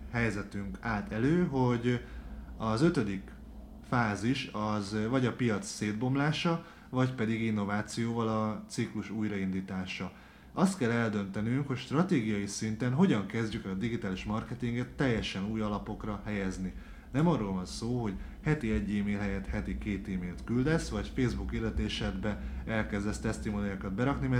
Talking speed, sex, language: 130 wpm, male, Hungarian